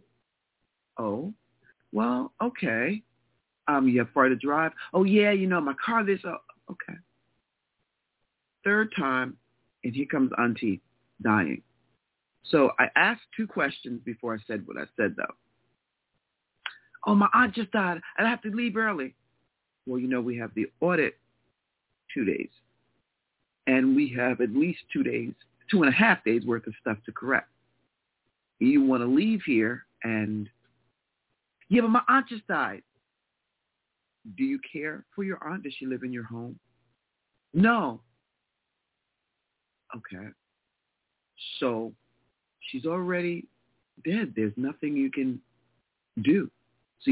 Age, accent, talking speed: 50-69, American, 140 wpm